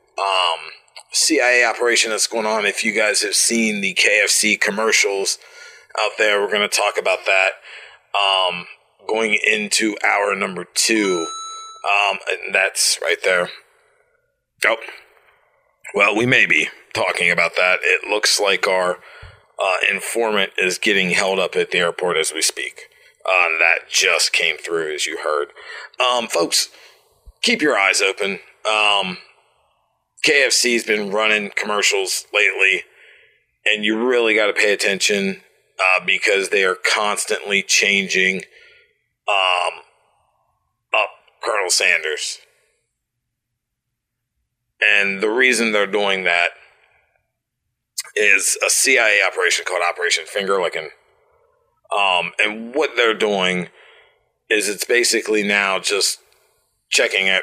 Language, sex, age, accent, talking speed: English, male, 30-49, American, 125 wpm